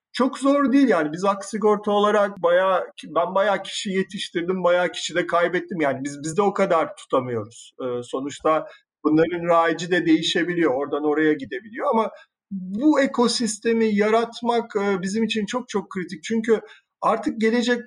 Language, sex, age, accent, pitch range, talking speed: Turkish, male, 50-69, native, 170-215 Hz, 150 wpm